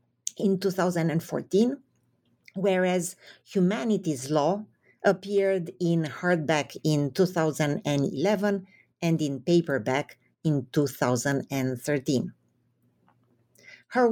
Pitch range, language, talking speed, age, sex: 140-195 Hz, English, 70 wpm, 50-69, female